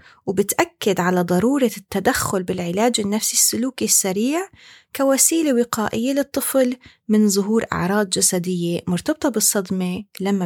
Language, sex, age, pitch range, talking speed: Arabic, female, 30-49, 195-250 Hz, 105 wpm